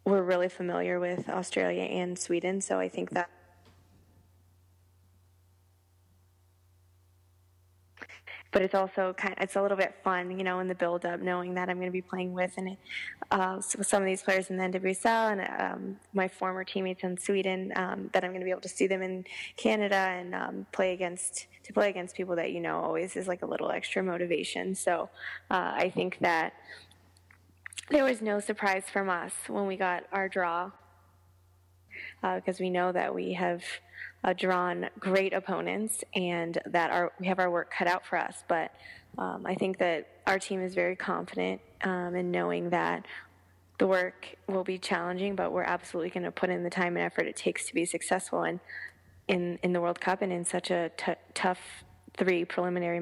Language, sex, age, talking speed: English, female, 20-39, 190 wpm